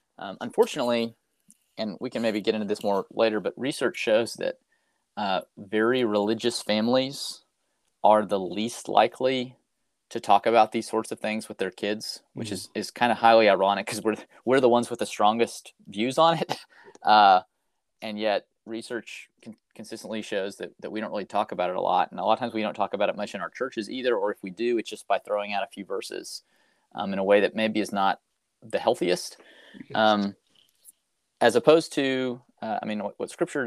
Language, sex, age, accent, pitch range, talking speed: English, male, 30-49, American, 100-115 Hz, 205 wpm